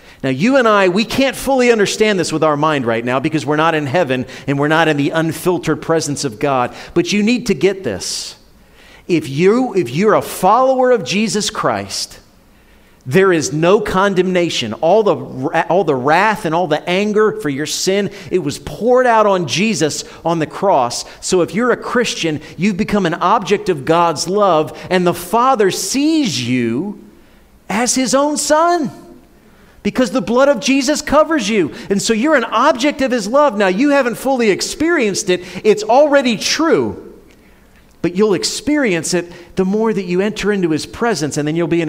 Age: 40-59